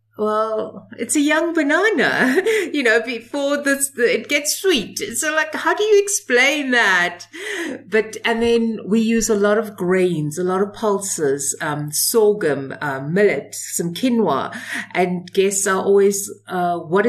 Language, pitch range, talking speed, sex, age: English, 175-245 Hz, 155 wpm, female, 50-69